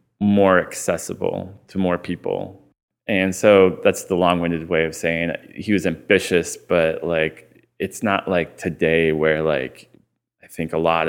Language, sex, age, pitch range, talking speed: English, male, 20-39, 80-95 Hz, 150 wpm